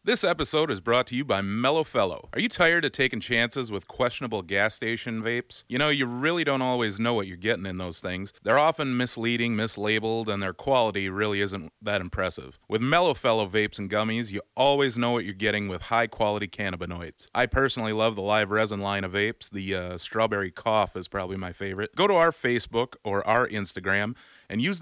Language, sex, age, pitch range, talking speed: English, male, 30-49, 100-125 Hz, 210 wpm